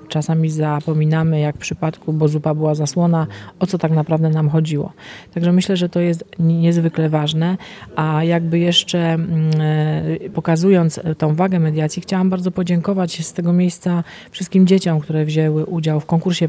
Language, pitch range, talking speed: Polish, 160-185 Hz, 155 wpm